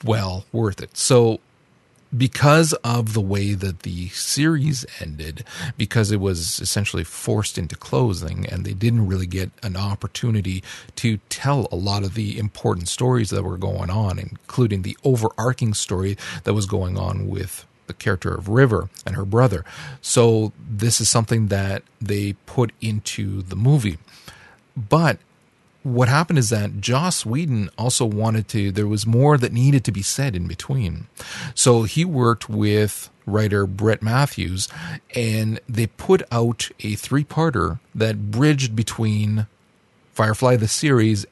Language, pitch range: English, 100-125 Hz